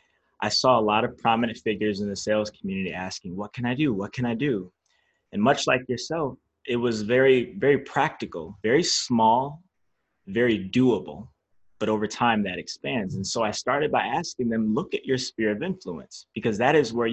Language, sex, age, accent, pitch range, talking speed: English, male, 20-39, American, 105-130 Hz, 195 wpm